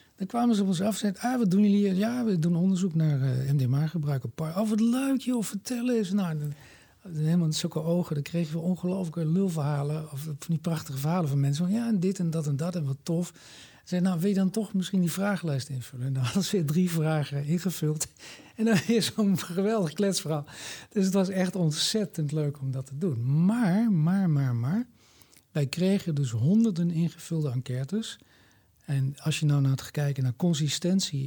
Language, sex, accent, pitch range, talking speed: Dutch, male, Dutch, 135-185 Hz, 215 wpm